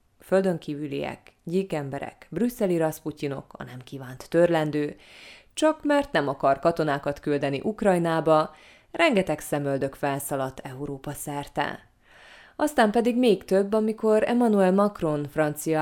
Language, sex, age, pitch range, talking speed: Hungarian, female, 20-39, 140-185 Hz, 105 wpm